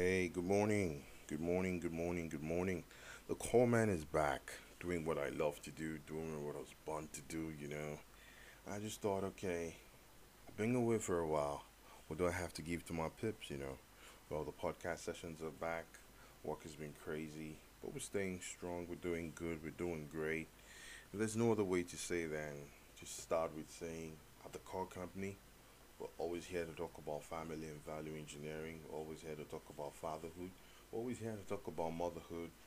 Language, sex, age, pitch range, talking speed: English, male, 20-39, 80-95 Hz, 200 wpm